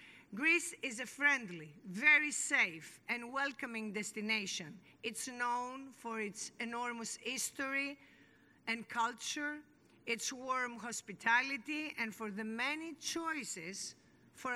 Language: English